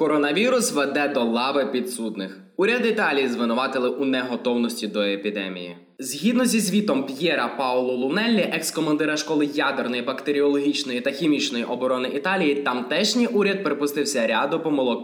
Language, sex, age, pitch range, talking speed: Ukrainian, male, 20-39, 125-175 Hz, 125 wpm